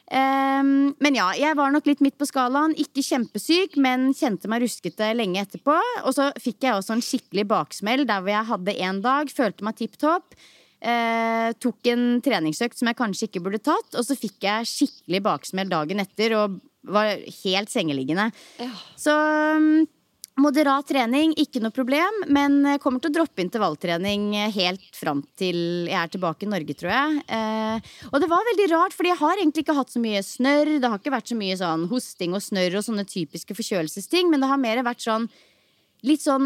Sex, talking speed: female, 185 wpm